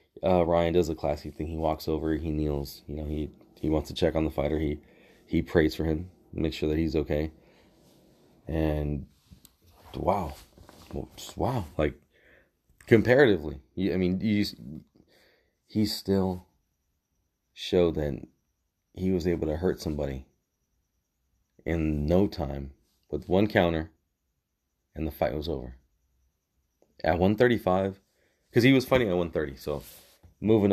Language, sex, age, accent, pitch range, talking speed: English, male, 30-49, American, 75-95 Hz, 140 wpm